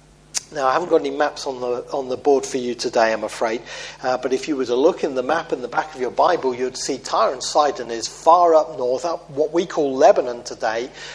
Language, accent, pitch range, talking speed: English, British, 135-165 Hz, 255 wpm